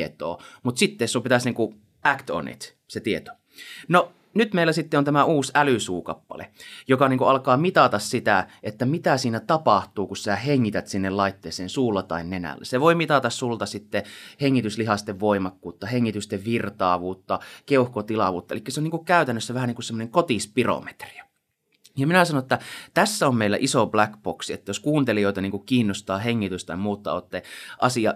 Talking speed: 160 wpm